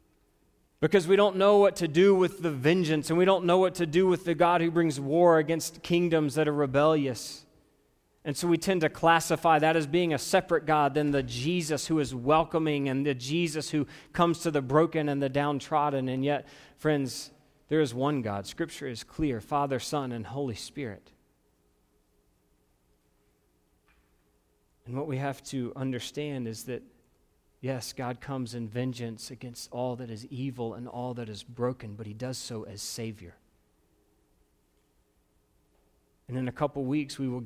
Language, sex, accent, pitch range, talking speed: English, male, American, 115-150 Hz, 175 wpm